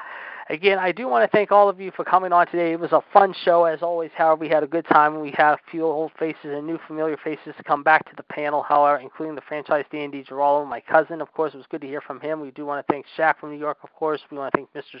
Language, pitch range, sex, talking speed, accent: English, 145-175 Hz, male, 300 wpm, American